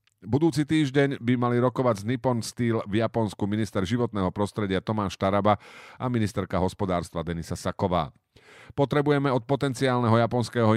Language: Slovak